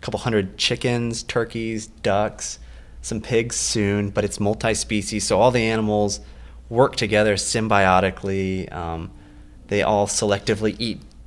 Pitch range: 90-110 Hz